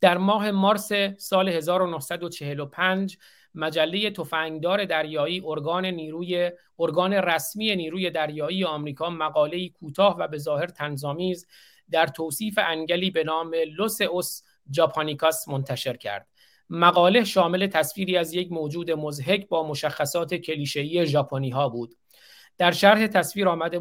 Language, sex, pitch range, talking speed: Persian, male, 155-185 Hz, 115 wpm